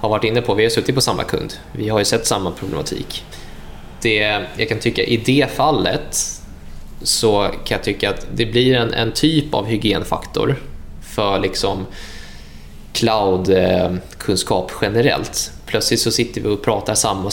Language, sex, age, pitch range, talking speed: Swedish, male, 20-39, 95-115 Hz, 160 wpm